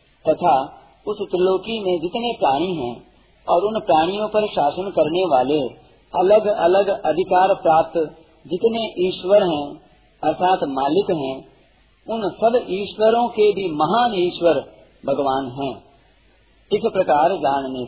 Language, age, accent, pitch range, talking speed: Hindi, 50-69, native, 145-190 Hz, 120 wpm